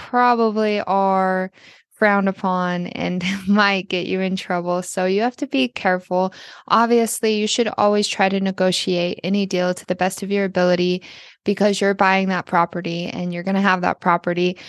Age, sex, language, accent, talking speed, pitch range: 20-39, female, English, American, 175 wpm, 185-205 Hz